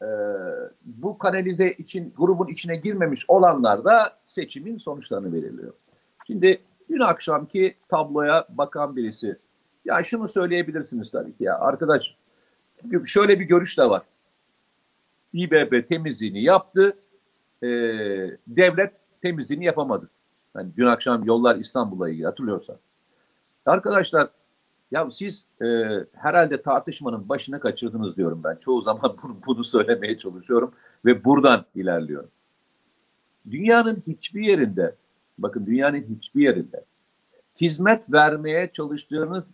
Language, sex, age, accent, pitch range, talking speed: Turkish, male, 50-69, native, 145-200 Hz, 110 wpm